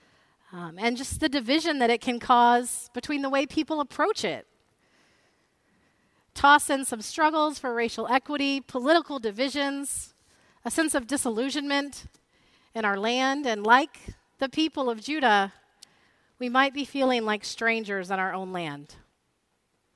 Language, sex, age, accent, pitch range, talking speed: English, female, 40-59, American, 215-280 Hz, 140 wpm